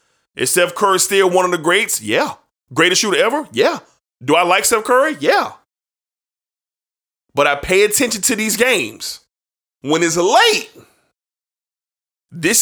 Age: 20-39